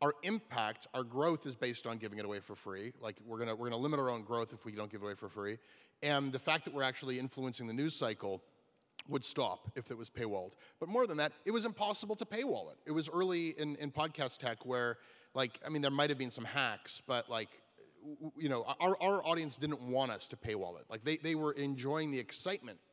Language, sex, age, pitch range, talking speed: English, male, 30-49, 115-145 Hz, 240 wpm